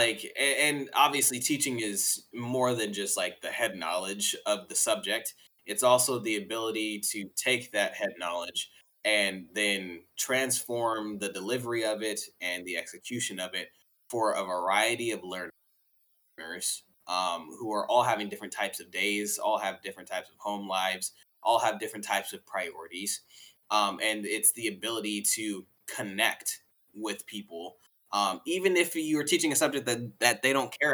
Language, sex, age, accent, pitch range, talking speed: English, male, 20-39, American, 100-125 Hz, 165 wpm